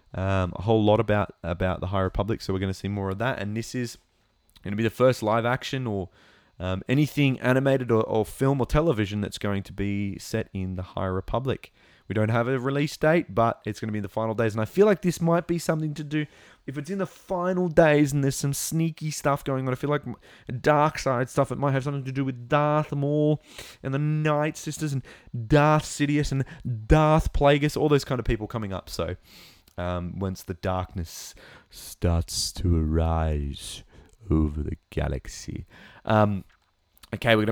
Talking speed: 210 wpm